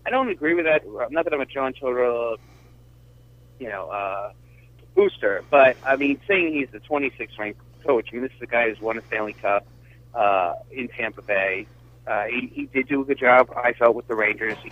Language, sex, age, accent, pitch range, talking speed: English, male, 30-49, American, 115-130 Hz, 215 wpm